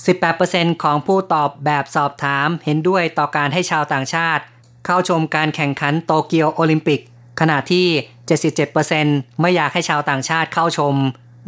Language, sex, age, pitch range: Thai, female, 20-39, 145-170 Hz